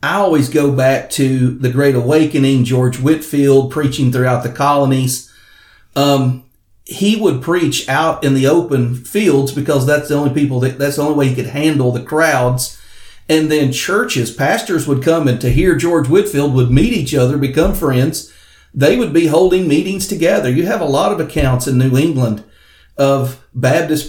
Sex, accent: male, American